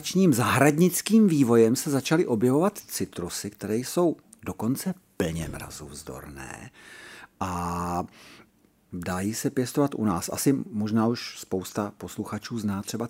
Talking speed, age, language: 110 wpm, 50-69, Czech